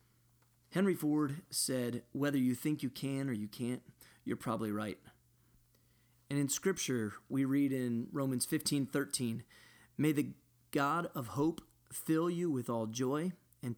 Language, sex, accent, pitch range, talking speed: English, male, American, 120-145 Hz, 145 wpm